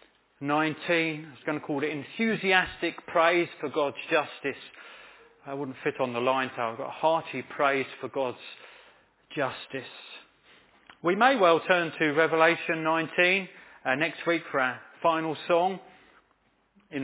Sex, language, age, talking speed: male, English, 40-59, 145 wpm